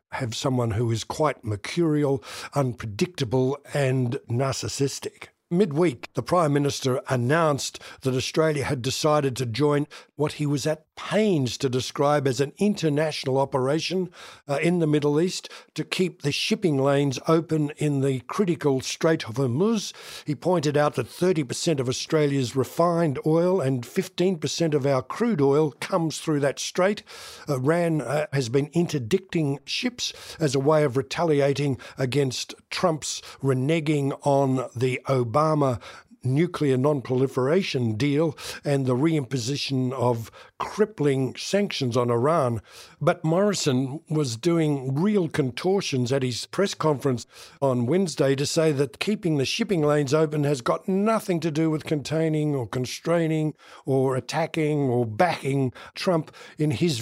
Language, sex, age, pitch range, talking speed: English, male, 60-79, 135-160 Hz, 140 wpm